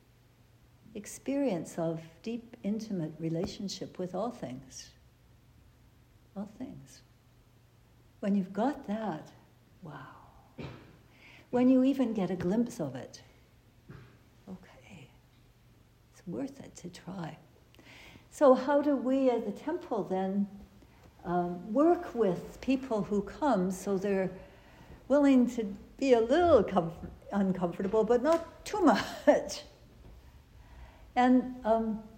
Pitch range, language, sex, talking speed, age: 155-255 Hz, English, female, 105 wpm, 60-79